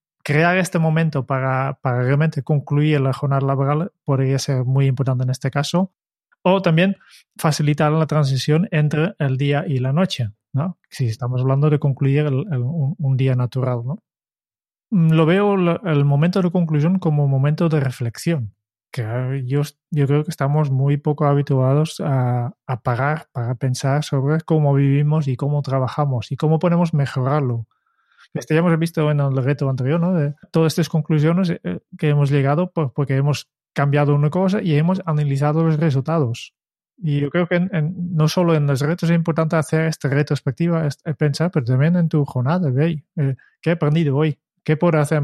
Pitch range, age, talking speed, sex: 140-165 Hz, 30-49, 180 wpm, male